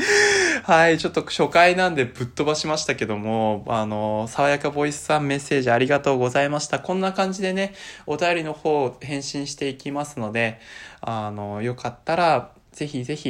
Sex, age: male, 20-39